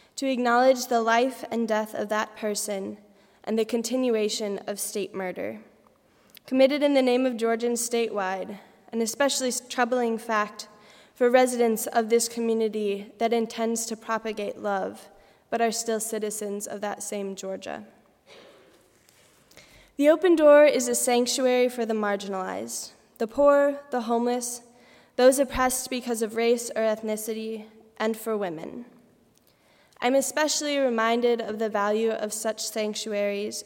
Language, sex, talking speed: English, female, 135 wpm